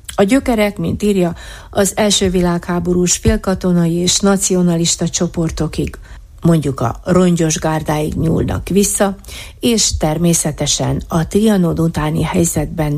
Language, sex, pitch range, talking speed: Hungarian, female, 150-185 Hz, 105 wpm